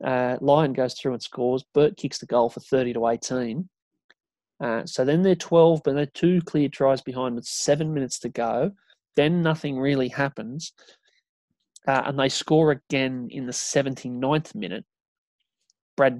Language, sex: English, male